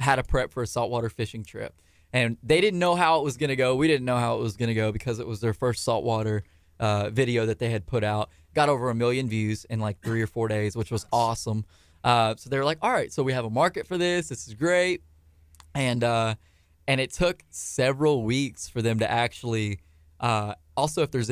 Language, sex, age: English, male, 20-39